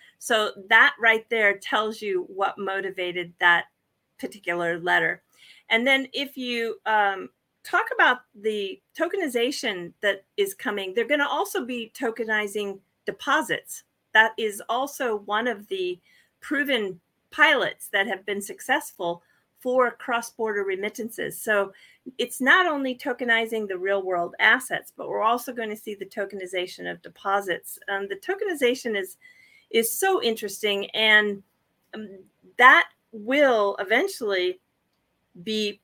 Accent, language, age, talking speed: American, English, 40-59, 125 wpm